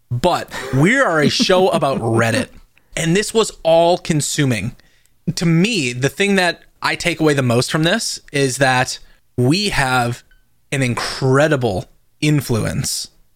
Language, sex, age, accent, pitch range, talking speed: English, male, 20-39, American, 125-170 Hz, 135 wpm